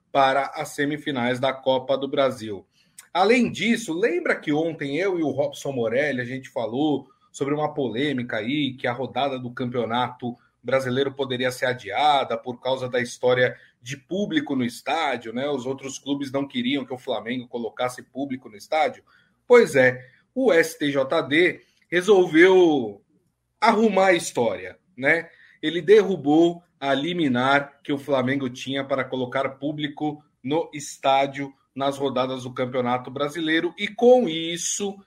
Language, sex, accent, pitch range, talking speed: Portuguese, male, Brazilian, 130-155 Hz, 145 wpm